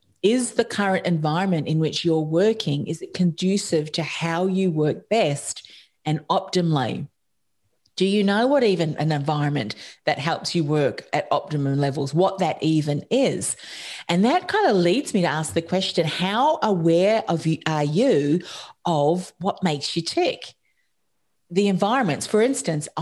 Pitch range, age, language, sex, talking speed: 155-200 Hz, 40-59, English, female, 155 wpm